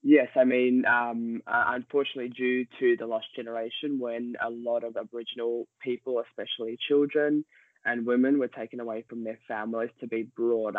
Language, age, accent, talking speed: Italian, 20-39, Australian, 165 wpm